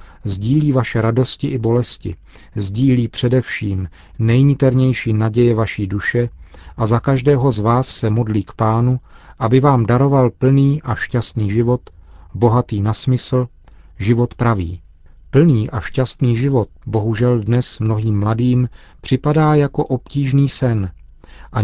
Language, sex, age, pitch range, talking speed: Czech, male, 40-59, 105-130 Hz, 125 wpm